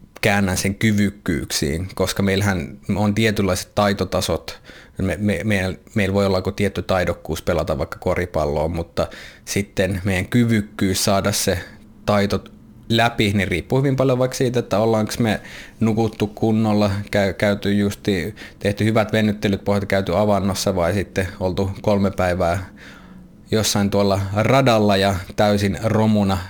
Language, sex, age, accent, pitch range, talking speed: Finnish, male, 20-39, native, 95-110 Hz, 120 wpm